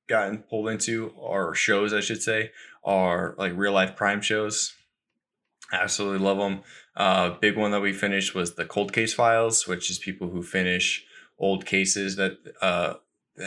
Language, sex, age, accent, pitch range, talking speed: English, male, 10-29, American, 90-105 Hz, 170 wpm